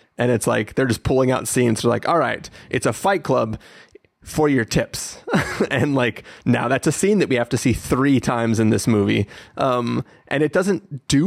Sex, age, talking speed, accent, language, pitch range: male, 30-49, 215 wpm, American, English, 110-130 Hz